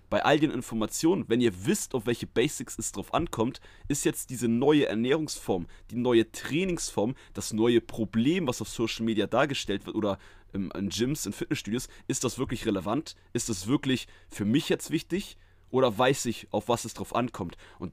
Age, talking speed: 30-49, 185 wpm